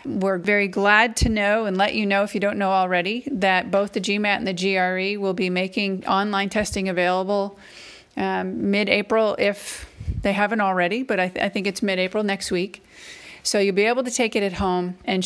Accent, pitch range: American, 185-215 Hz